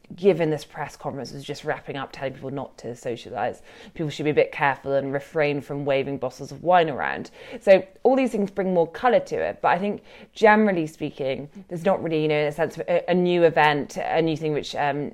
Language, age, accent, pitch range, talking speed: English, 20-39, British, 150-185 Hz, 225 wpm